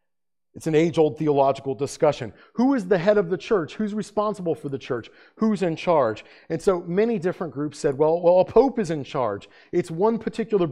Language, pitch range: English, 135-190 Hz